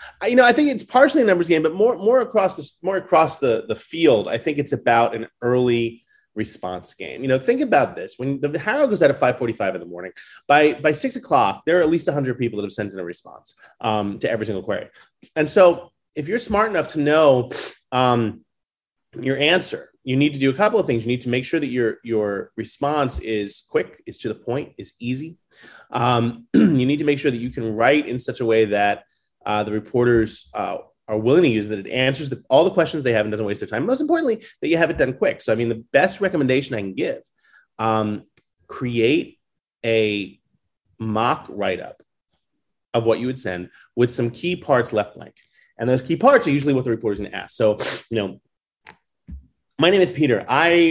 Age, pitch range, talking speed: 30-49, 115-165 Hz, 230 wpm